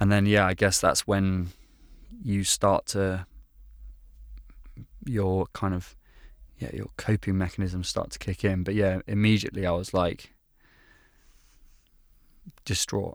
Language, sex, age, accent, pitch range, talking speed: English, male, 20-39, British, 95-100 Hz, 130 wpm